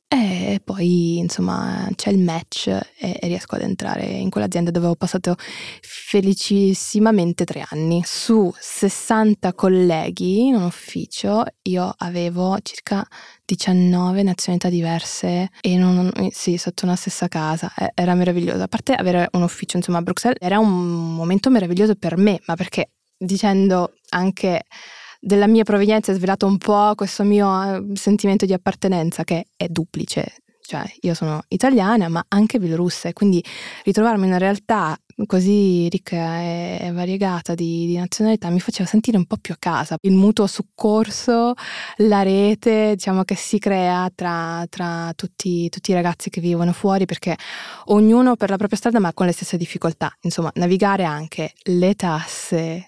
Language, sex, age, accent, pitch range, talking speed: Italian, female, 20-39, native, 175-205 Hz, 150 wpm